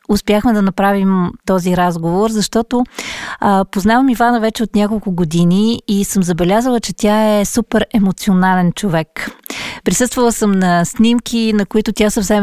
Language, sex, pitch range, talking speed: Bulgarian, female, 190-230 Hz, 140 wpm